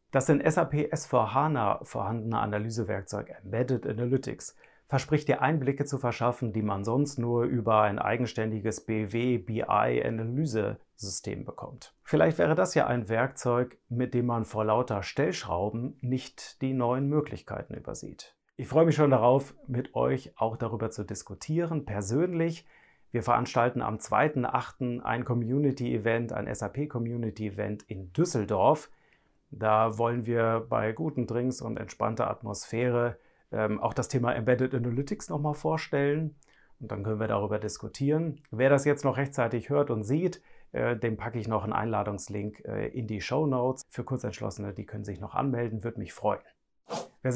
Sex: male